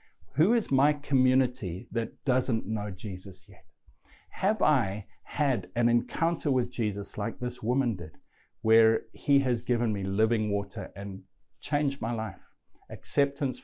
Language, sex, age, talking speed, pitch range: English, male, 60-79, 140 wpm, 100-125 Hz